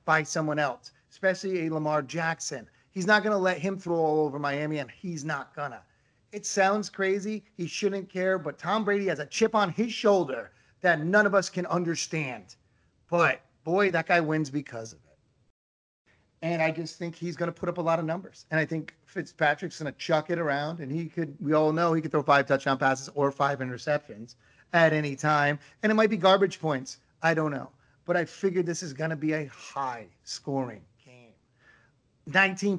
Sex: male